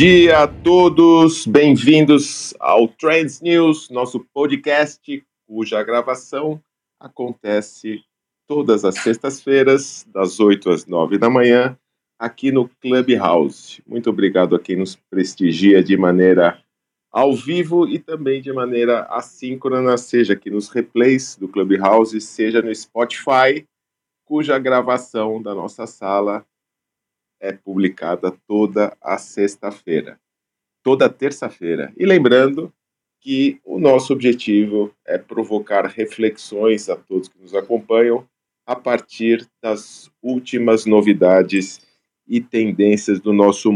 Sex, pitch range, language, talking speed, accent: male, 105-135 Hz, Portuguese, 115 wpm, Brazilian